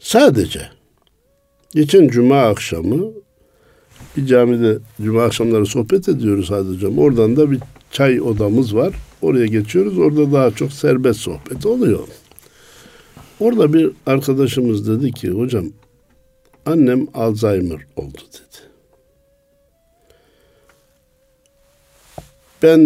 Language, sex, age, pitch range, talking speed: Turkish, male, 60-79, 100-145 Hz, 95 wpm